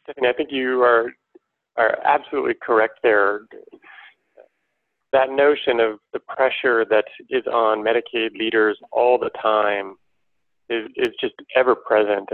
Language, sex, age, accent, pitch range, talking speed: English, male, 30-49, American, 110-145 Hz, 125 wpm